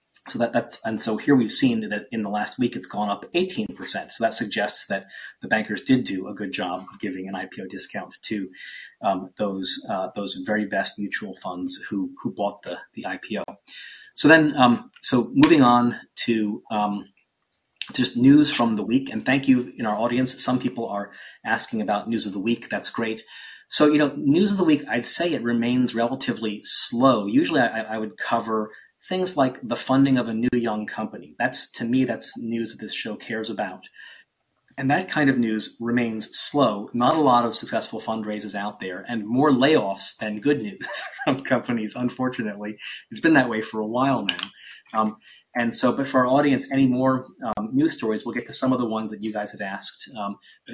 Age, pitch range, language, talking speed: 30-49, 105-130 Hz, English, 200 wpm